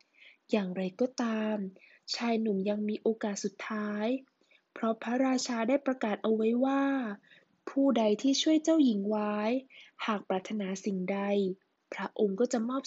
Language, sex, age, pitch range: Thai, female, 20-39, 210-260 Hz